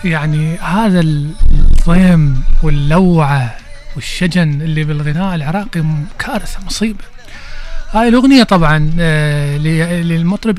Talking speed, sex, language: 80 wpm, male, Arabic